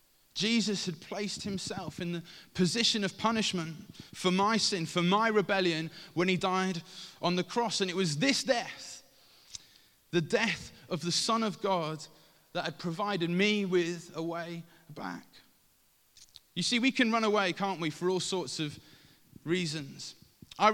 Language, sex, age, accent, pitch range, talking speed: English, male, 20-39, British, 160-200 Hz, 160 wpm